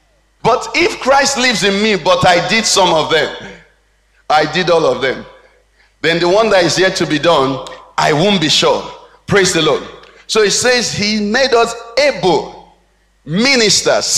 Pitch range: 170-225 Hz